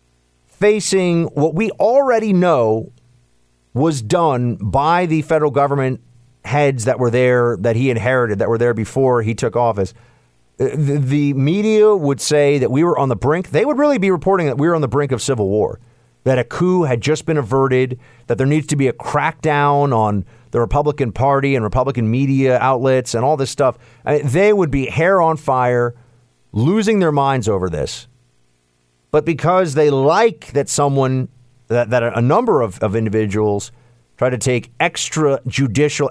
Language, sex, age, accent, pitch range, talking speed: English, male, 40-59, American, 115-160 Hz, 175 wpm